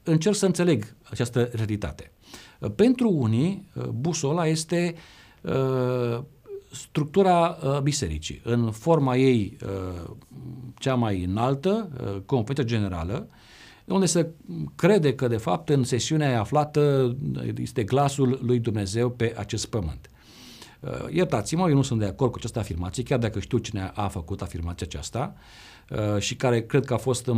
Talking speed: 140 wpm